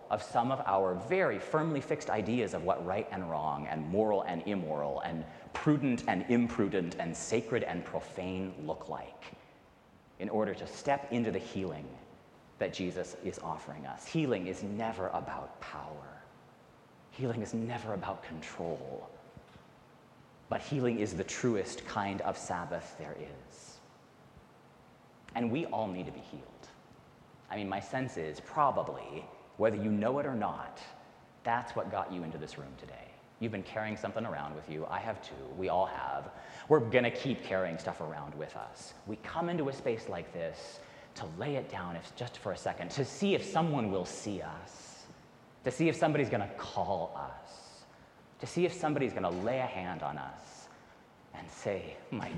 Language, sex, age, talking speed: English, male, 30-49, 175 wpm